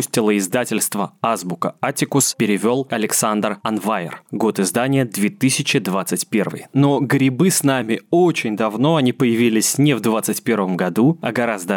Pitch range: 120-160 Hz